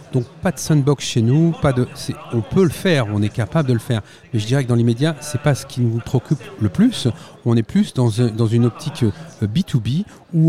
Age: 40-59